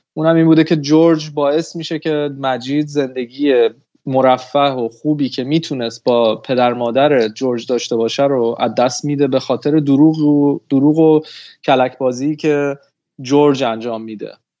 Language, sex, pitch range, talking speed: Persian, male, 135-165 Hz, 145 wpm